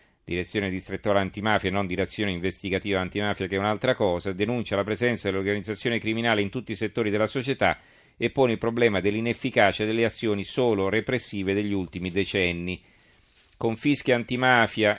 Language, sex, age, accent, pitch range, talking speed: Italian, male, 40-59, native, 100-115 Hz, 145 wpm